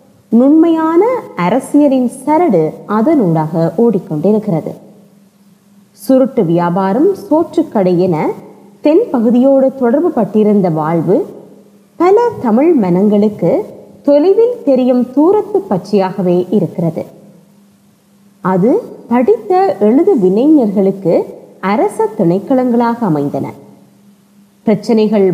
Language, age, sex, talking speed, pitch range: Tamil, 20-39, female, 70 wpm, 200-285 Hz